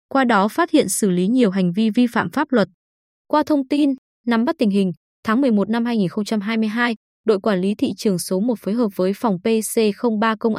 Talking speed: 210 wpm